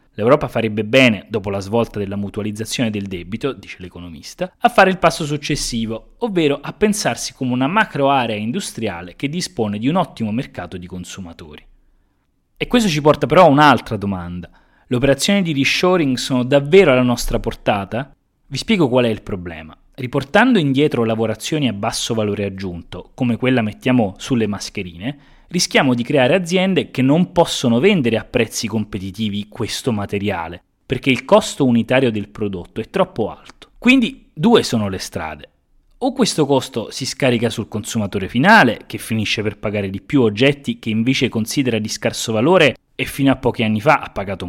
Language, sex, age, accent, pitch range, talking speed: Italian, male, 20-39, native, 105-145 Hz, 165 wpm